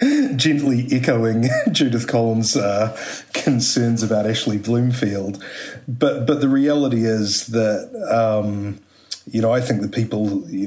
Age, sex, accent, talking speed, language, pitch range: 30-49, male, Australian, 130 wpm, English, 100-120 Hz